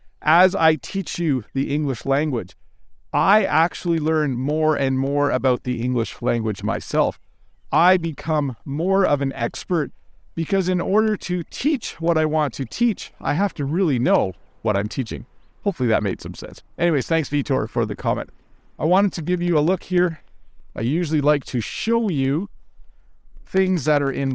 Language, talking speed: English, 175 wpm